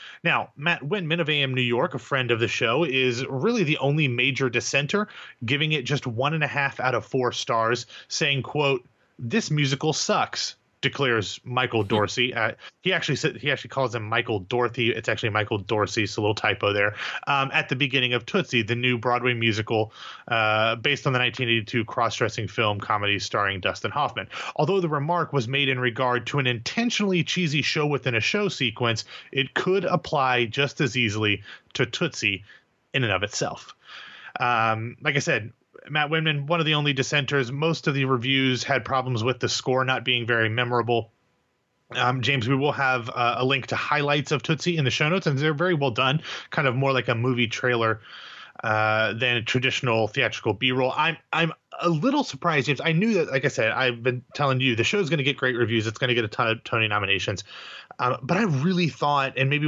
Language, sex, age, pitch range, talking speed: English, male, 30-49, 120-145 Hz, 205 wpm